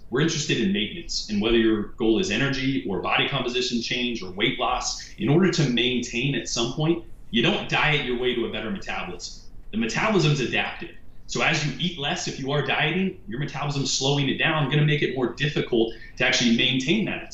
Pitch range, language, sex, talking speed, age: 115-150 Hz, English, male, 215 wpm, 30-49